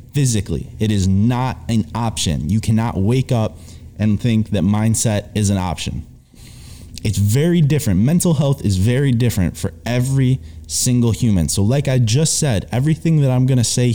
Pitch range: 100-130 Hz